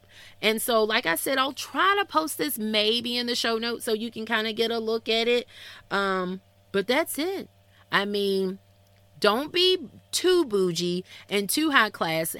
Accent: American